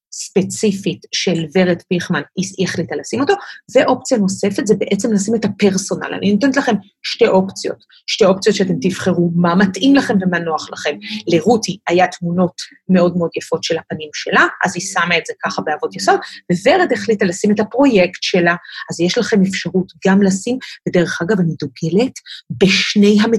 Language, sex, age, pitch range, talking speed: Hebrew, female, 30-49, 175-210 Hz, 155 wpm